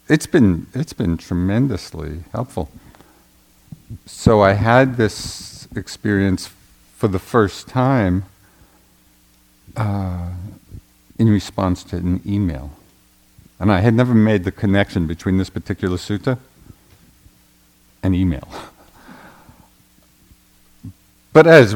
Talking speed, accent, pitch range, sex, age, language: 100 wpm, American, 75-105 Hz, male, 50-69, English